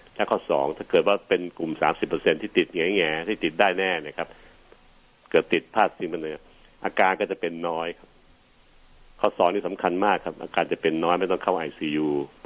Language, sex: Thai, male